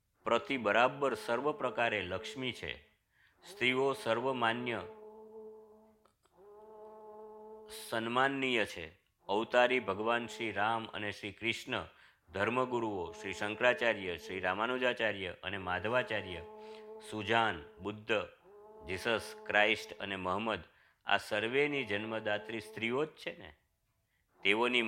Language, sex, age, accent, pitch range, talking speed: Gujarati, male, 50-69, native, 105-145 Hz, 90 wpm